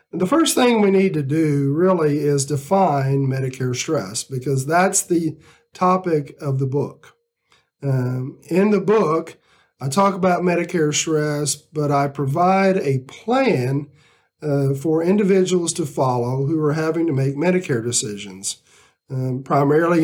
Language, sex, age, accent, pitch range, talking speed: English, male, 50-69, American, 135-180 Hz, 140 wpm